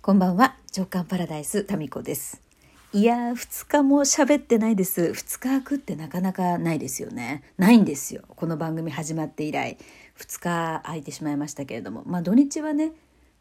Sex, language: female, Japanese